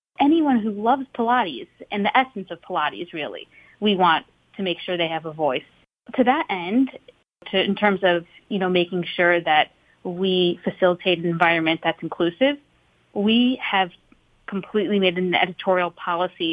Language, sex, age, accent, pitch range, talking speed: English, female, 30-49, American, 175-200 Hz, 155 wpm